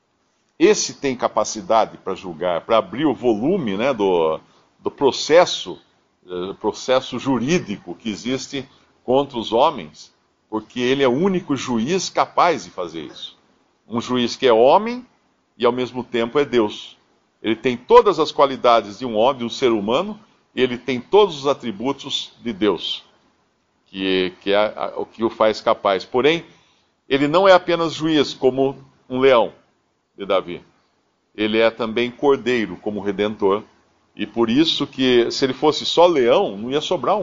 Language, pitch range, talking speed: Portuguese, 115-150 Hz, 155 wpm